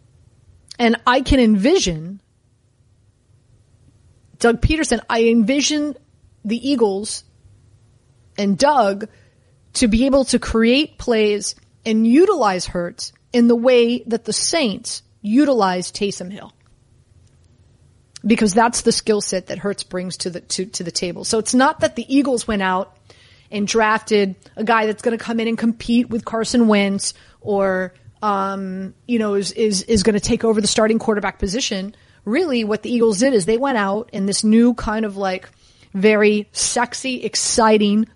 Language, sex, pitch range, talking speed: English, female, 195-240 Hz, 155 wpm